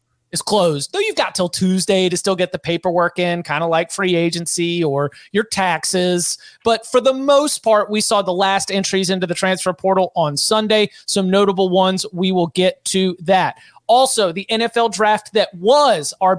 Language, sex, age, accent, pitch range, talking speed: English, male, 30-49, American, 185-225 Hz, 190 wpm